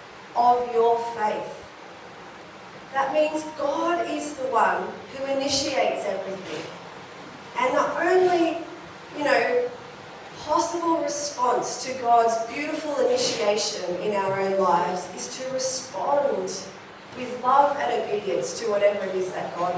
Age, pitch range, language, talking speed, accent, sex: 30-49, 245-320 Hz, English, 120 wpm, Australian, female